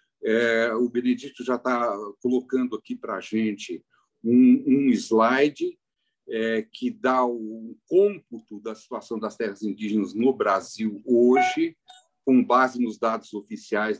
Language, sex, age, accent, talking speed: Portuguese, male, 50-69, Brazilian, 135 wpm